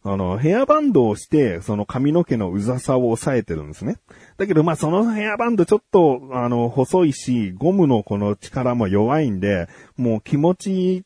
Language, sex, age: Japanese, male, 40-59